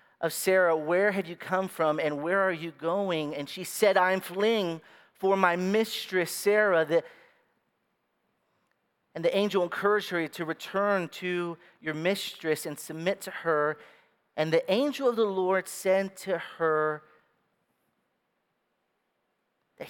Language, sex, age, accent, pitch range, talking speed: English, male, 40-59, American, 140-190 Hz, 135 wpm